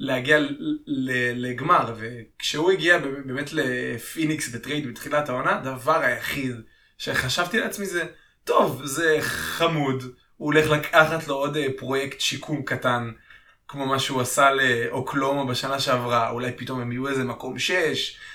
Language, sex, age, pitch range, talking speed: Hebrew, male, 20-39, 125-150 Hz, 130 wpm